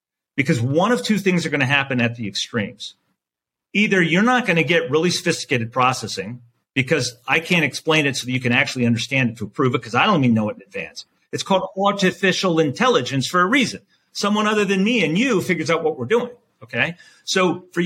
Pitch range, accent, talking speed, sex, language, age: 130-180 Hz, American, 210 wpm, male, English, 40-59